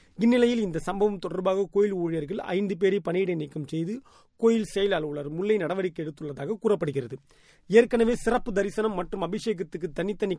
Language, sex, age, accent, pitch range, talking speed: Tamil, male, 30-49, native, 160-210 Hz, 140 wpm